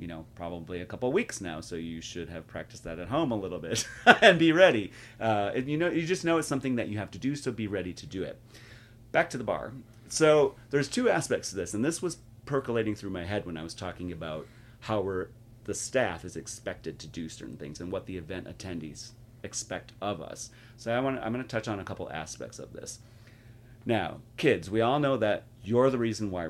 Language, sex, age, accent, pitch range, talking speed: English, male, 30-49, American, 95-120 Hz, 235 wpm